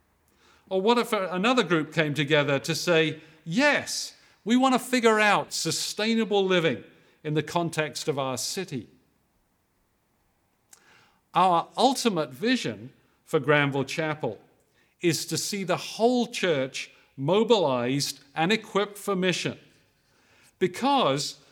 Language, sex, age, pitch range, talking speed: English, male, 50-69, 135-190 Hz, 115 wpm